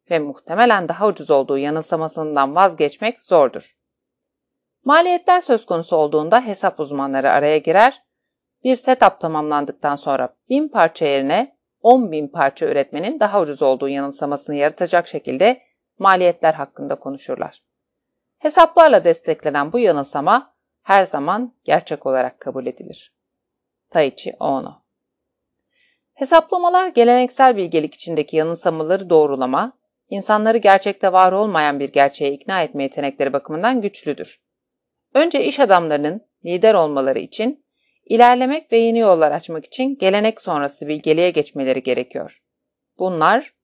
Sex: female